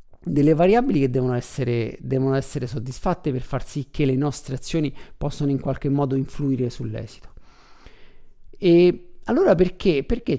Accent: native